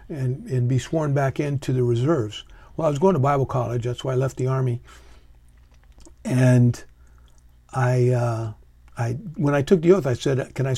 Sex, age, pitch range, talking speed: male, 50-69, 110-135 Hz, 190 wpm